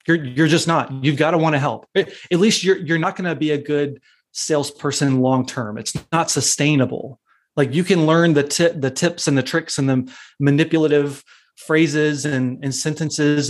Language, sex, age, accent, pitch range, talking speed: English, male, 30-49, American, 135-160 Hz, 195 wpm